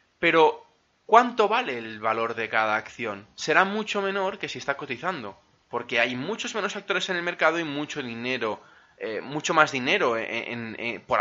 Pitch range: 125-205 Hz